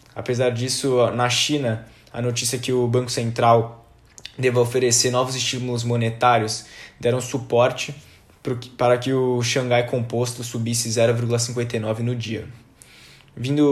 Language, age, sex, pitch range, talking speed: Portuguese, 20-39, male, 115-130 Hz, 120 wpm